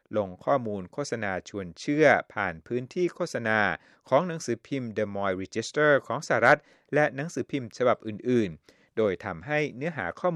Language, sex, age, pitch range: Thai, male, 60-79, 95-130 Hz